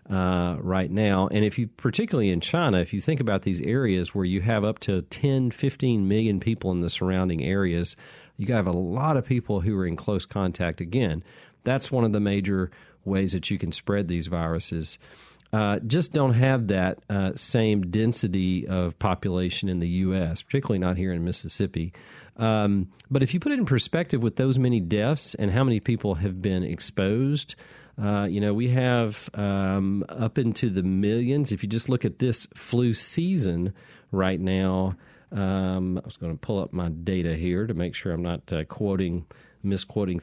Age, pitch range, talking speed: 40-59, 95-120 Hz, 190 wpm